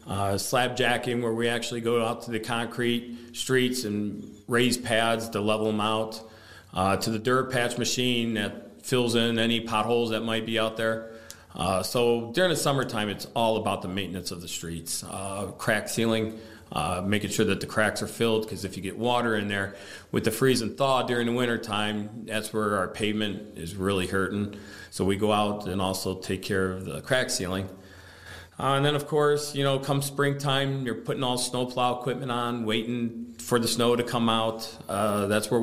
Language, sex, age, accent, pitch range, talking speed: English, male, 40-59, American, 100-120 Hz, 200 wpm